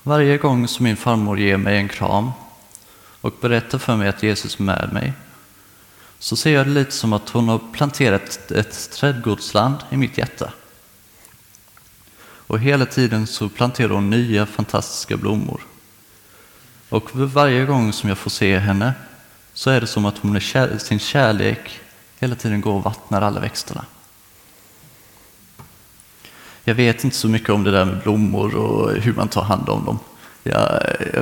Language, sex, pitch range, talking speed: English, male, 100-120 Hz, 160 wpm